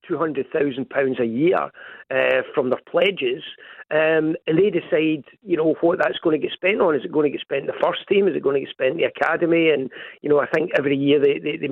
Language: English